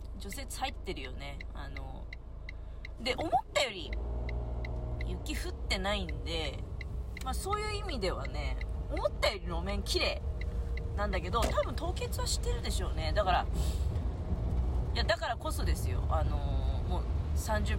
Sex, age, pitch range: female, 30-49, 75-85 Hz